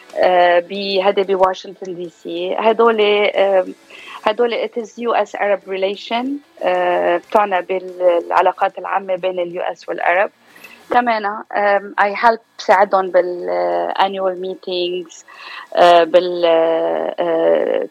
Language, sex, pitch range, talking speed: Arabic, female, 175-215 Hz, 85 wpm